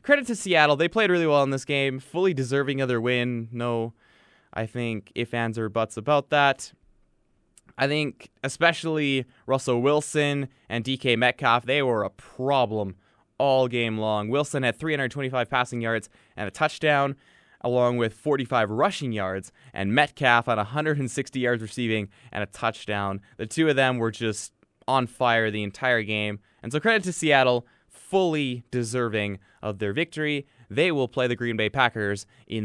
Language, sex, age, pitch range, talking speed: English, male, 20-39, 115-150 Hz, 165 wpm